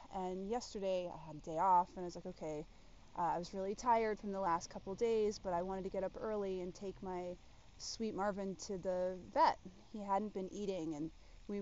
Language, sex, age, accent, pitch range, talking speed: English, female, 20-39, American, 170-200 Hz, 225 wpm